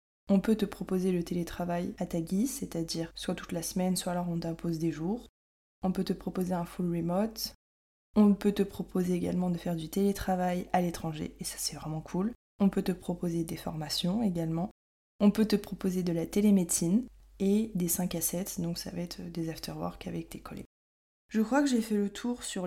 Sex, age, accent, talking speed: female, 20-39, French, 210 wpm